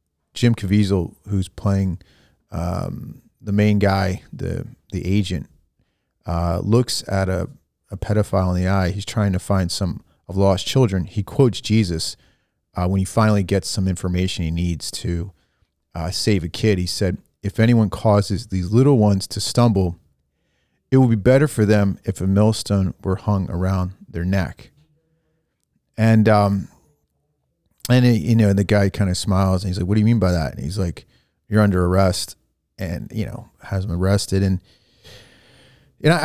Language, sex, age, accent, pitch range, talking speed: English, male, 40-59, American, 90-110 Hz, 170 wpm